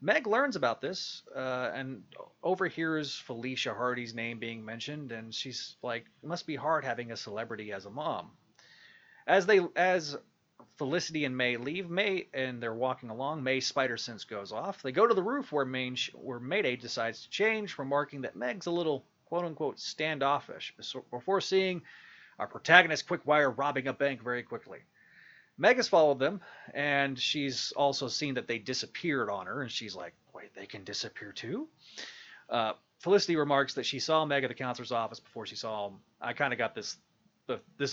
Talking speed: 180 wpm